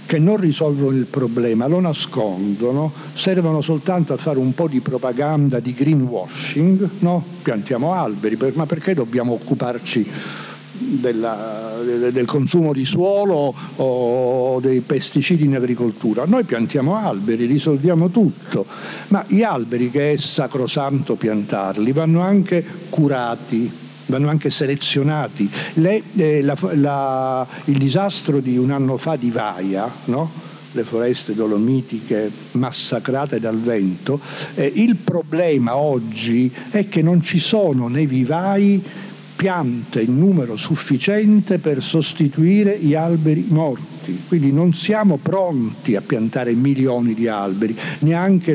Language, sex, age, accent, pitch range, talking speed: Italian, male, 60-79, native, 120-160 Hz, 125 wpm